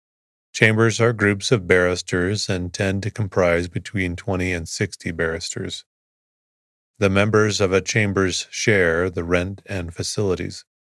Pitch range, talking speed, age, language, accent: 85-100 Hz, 130 wpm, 30-49, English, American